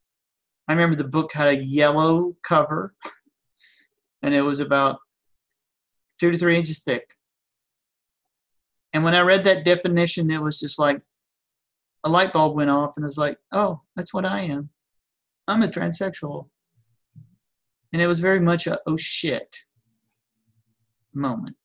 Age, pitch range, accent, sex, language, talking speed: 40-59, 135-170 Hz, American, male, English, 145 wpm